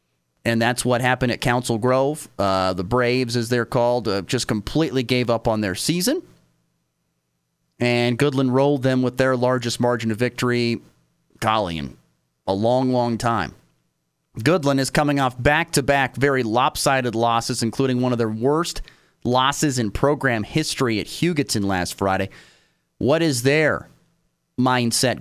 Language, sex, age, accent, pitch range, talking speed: English, male, 30-49, American, 105-140 Hz, 145 wpm